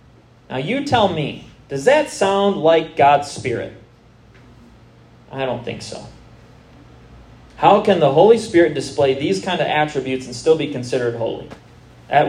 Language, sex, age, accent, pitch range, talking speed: English, male, 30-49, American, 120-165 Hz, 145 wpm